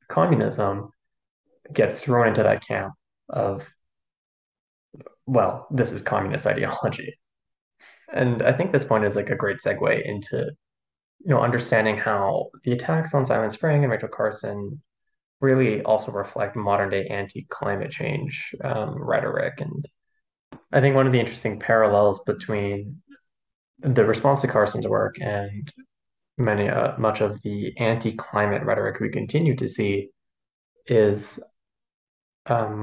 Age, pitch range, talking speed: 20-39, 105-135 Hz, 130 wpm